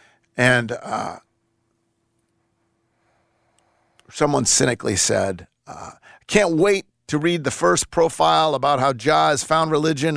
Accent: American